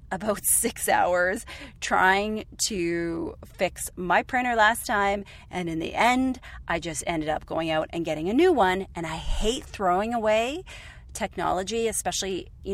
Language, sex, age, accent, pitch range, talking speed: English, female, 30-49, American, 180-235 Hz, 155 wpm